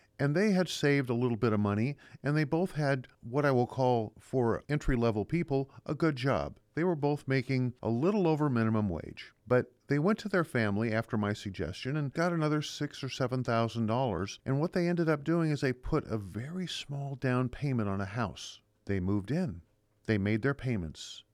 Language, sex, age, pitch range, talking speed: English, male, 50-69, 110-150 Hz, 200 wpm